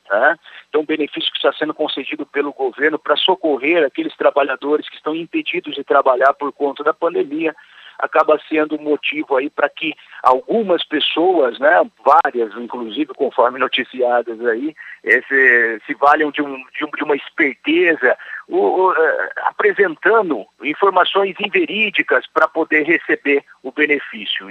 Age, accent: 50-69, Brazilian